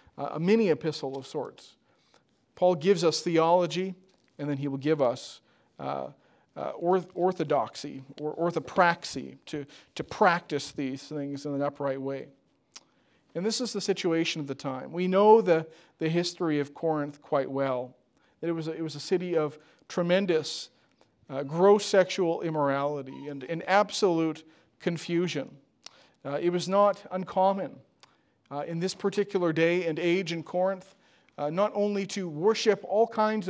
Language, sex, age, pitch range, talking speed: English, male, 40-59, 155-195 Hz, 145 wpm